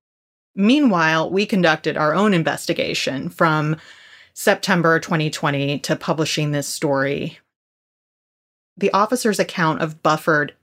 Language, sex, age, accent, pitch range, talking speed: English, female, 30-49, American, 155-185 Hz, 100 wpm